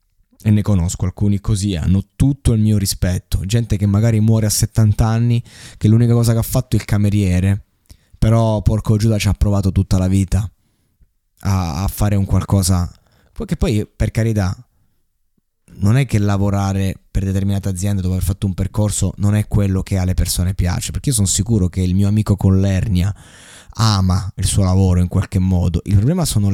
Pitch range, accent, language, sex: 95-110 Hz, native, Italian, male